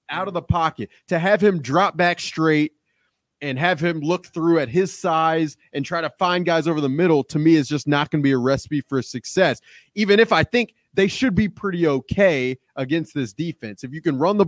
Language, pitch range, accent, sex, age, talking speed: English, 145-185 Hz, American, male, 20-39, 230 wpm